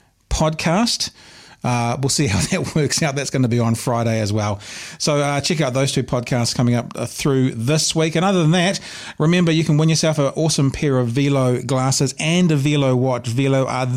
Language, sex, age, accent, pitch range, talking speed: English, male, 30-49, Australian, 120-150 Hz, 210 wpm